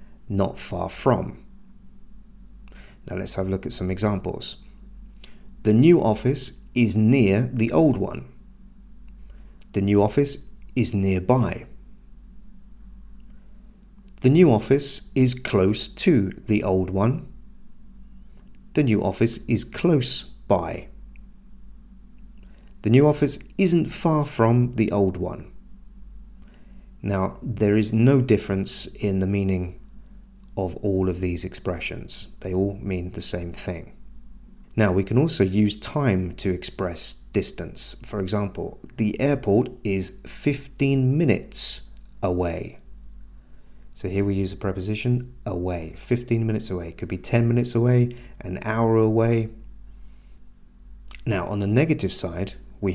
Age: 40-59